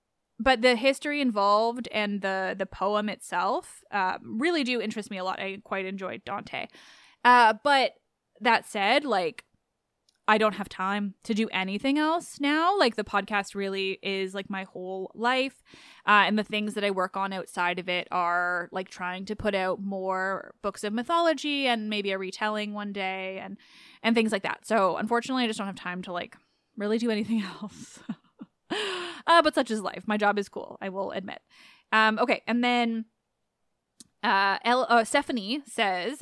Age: 10-29